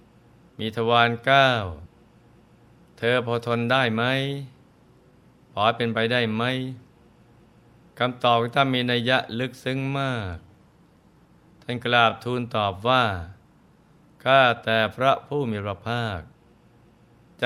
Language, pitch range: Thai, 110-130 Hz